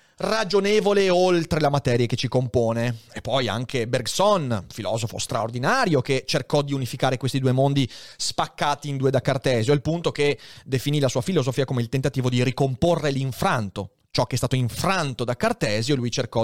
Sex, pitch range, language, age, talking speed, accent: male, 125-195 Hz, Italian, 30-49, 170 wpm, native